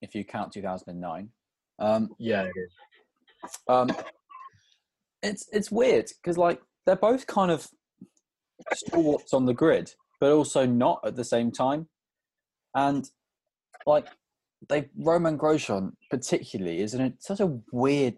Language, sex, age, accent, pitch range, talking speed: English, male, 20-39, British, 110-165 Hz, 140 wpm